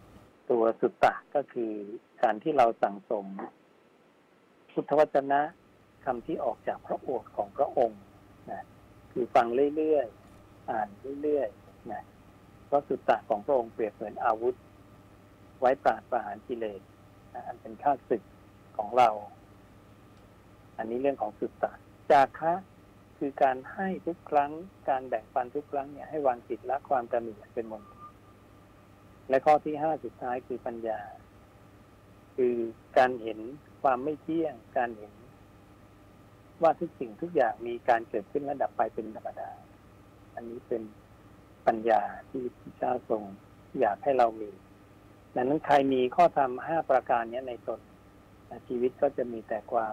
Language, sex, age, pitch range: Thai, male, 60-79, 100-130 Hz